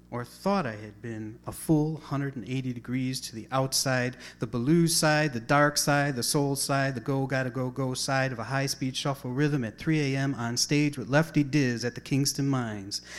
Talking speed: 190 wpm